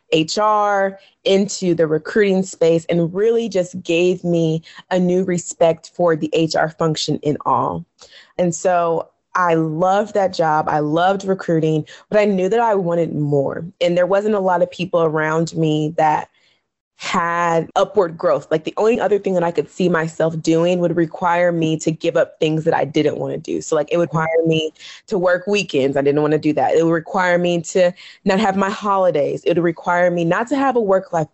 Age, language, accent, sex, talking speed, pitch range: 20-39, English, American, female, 205 wpm, 160-190 Hz